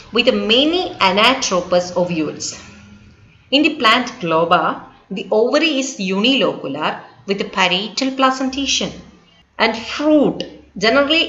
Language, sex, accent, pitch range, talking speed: English, female, Indian, 175-245 Hz, 100 wpm